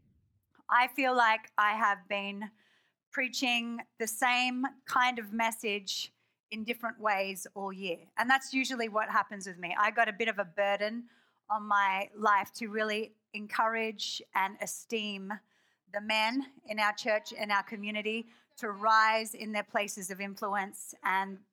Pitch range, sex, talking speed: 205-245 Hz, female, 155 wpm